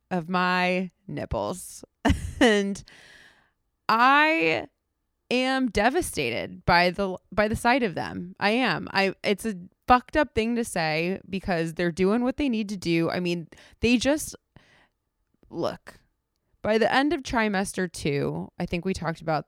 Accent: American